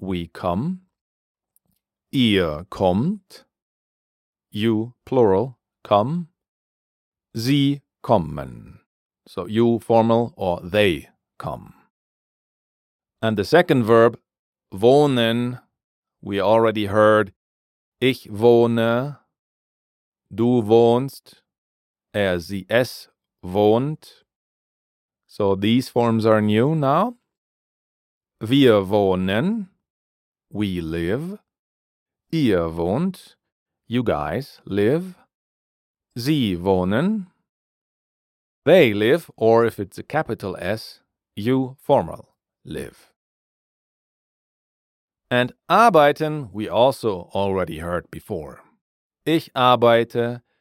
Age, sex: 40-59, male